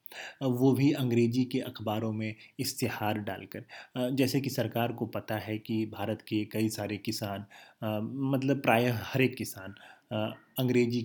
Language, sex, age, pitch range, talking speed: Hindi, male, 30-49, 110-130 Hz, 145 wpm